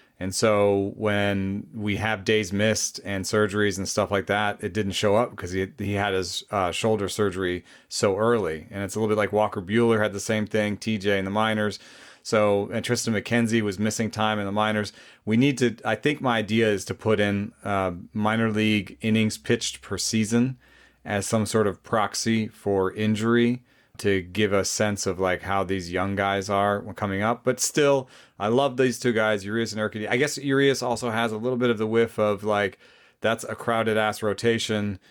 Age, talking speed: 30-49, 205 wpm